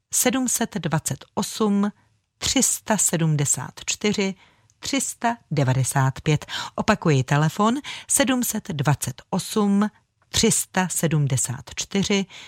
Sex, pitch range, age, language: female, 140-195 Hz, 40-59, Czech